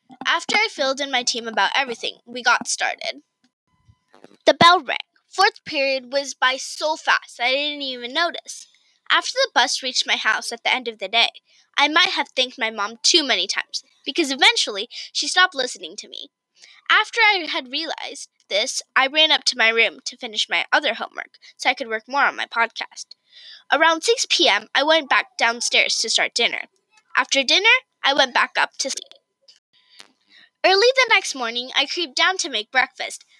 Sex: female